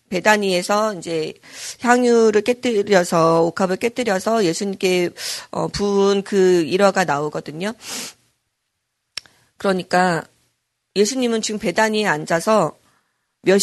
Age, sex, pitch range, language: 40-59, female, 175-215 Hz, Korean